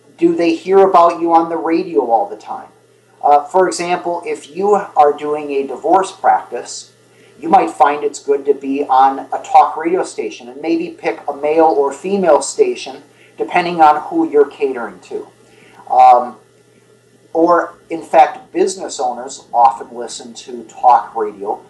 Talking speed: 160 wpm